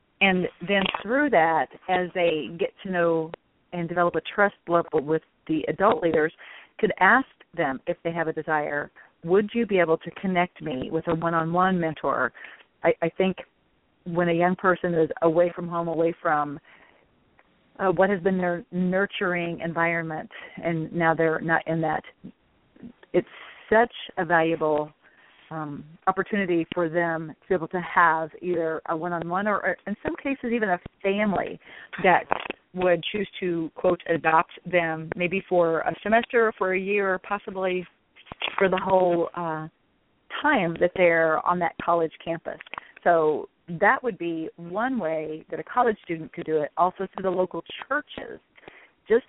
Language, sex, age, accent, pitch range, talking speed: English, female, 40-59, American, 165-195 Hz, 160 wpm